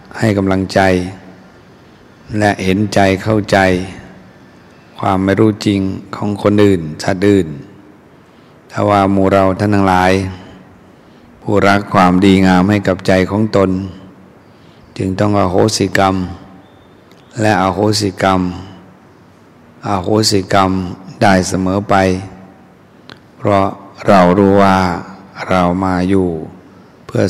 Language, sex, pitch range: Thai, male, 95-100 Hz